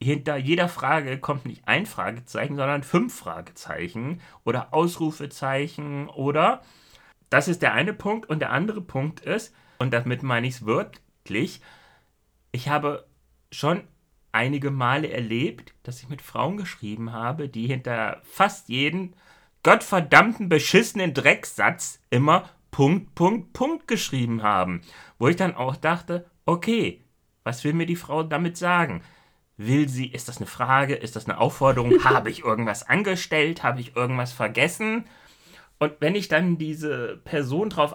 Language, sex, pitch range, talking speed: German, male, 110-165 Hz, 145 wpm